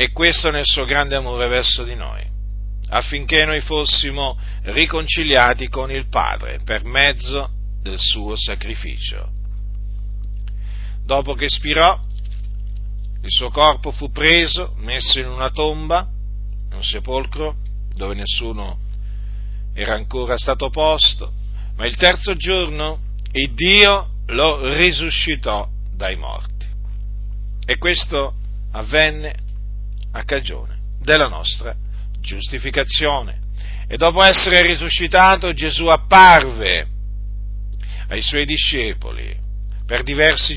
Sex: male